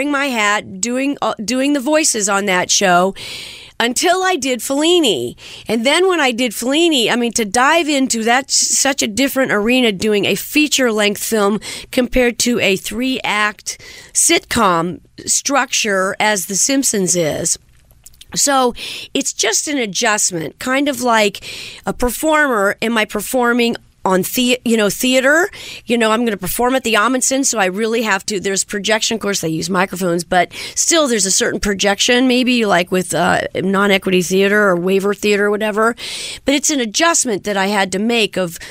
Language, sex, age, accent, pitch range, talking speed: English, female, 40-59, American, 195-255 Hz, 165 wpm